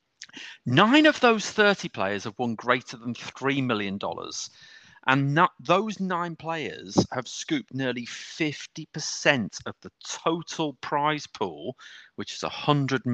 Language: English